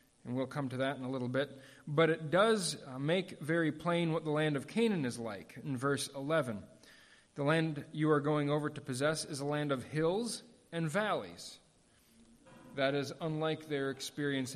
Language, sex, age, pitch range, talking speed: English, male, 40-59, 135-175 Hz, 185 wpm